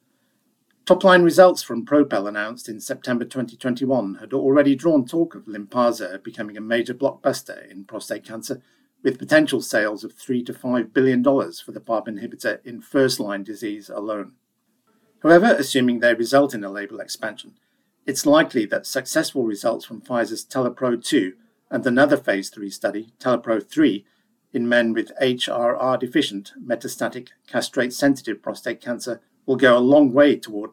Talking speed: 145 wpm